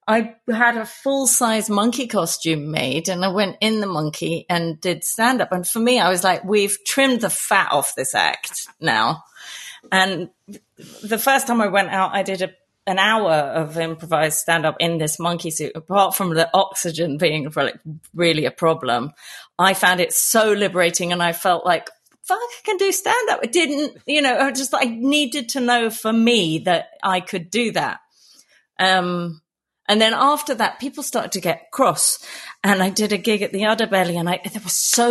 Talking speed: 195 wpm